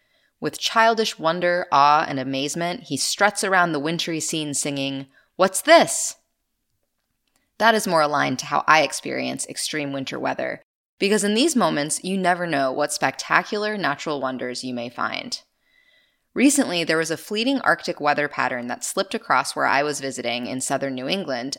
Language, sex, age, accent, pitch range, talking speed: English, female, 20-39, American, 140-200 Hz, 165 wpm